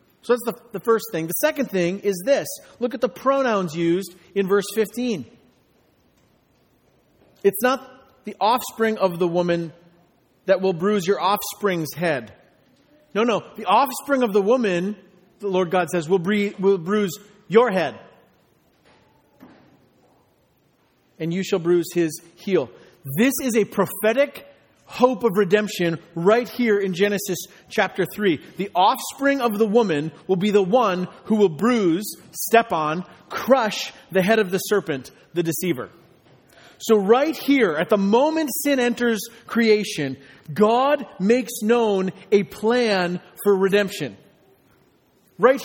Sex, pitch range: male, 175-235 Hz